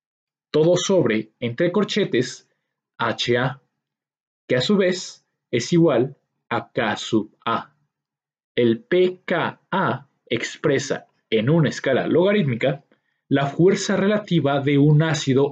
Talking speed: 110 wpm